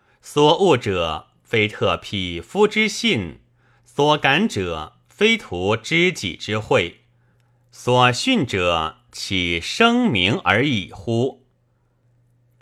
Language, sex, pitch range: Chinese, male, 105-135 Hz